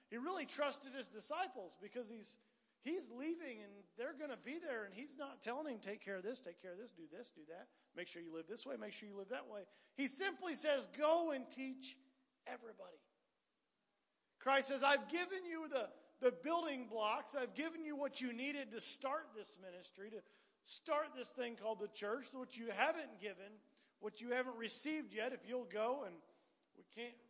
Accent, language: American, English